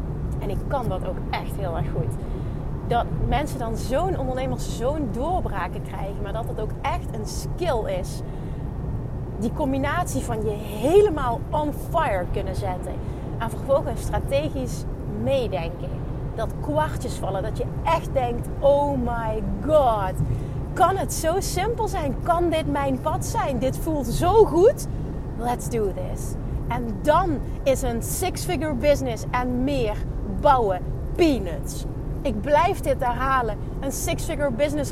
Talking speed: 140 wpm